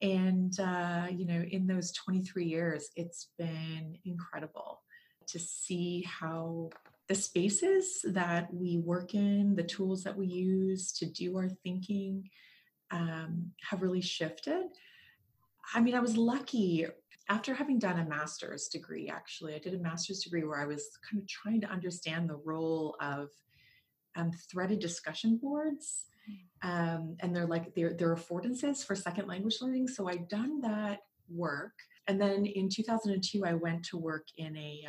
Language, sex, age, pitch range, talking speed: English, female, 30-49, 170-205 Hz, 155 wpm